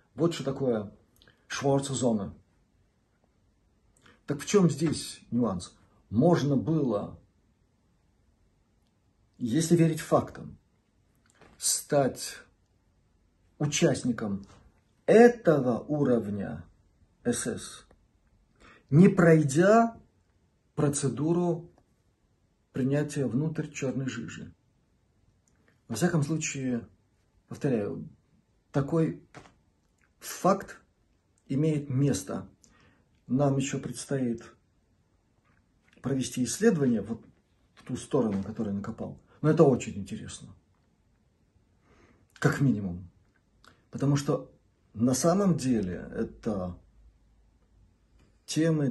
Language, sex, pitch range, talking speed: Russian, male, 100-150 Hz, 70 wpm